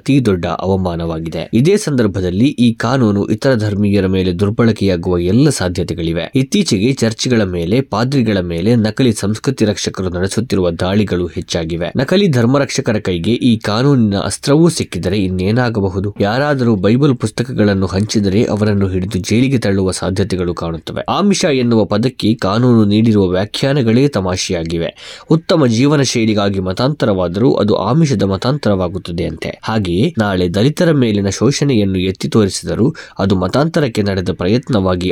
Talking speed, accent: 120 wpm, native